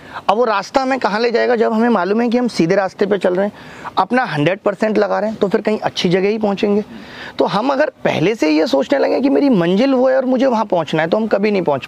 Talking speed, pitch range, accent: 285 wpm, 155-225 Hz, native